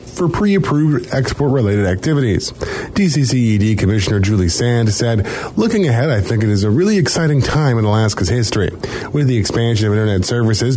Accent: American